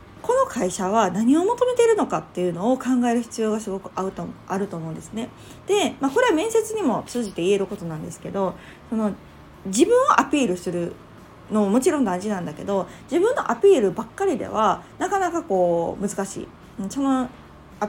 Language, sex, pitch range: Japanese, female, 185-300 Hz